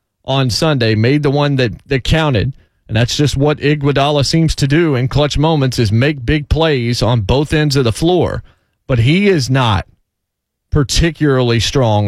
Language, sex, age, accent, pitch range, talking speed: English, male, 30-49, American, 125-195 Hz, 175 wpm